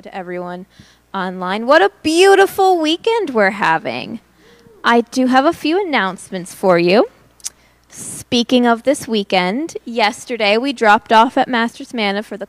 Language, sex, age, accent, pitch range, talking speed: English, female, 20-39, American, 195-250 Hz, 145 wpm